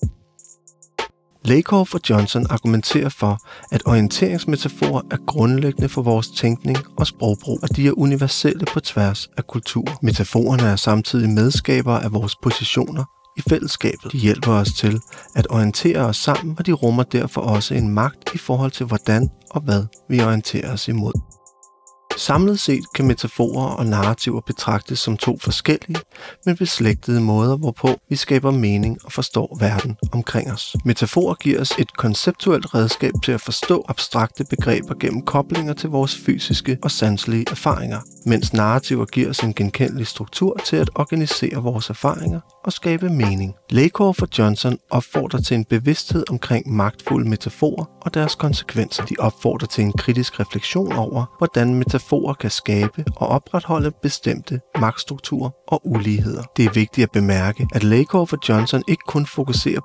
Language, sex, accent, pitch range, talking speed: Danish, male, native, 110-145 Hz, 155 wpm